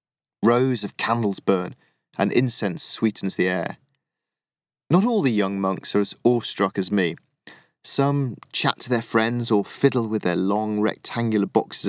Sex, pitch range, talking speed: male, 100-125 Hz, 155 wpm